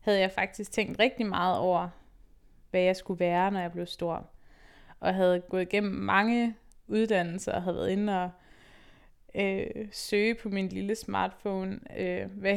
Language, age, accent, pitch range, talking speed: Danish, 20-39, native, 180-220 Hz, 160 wpm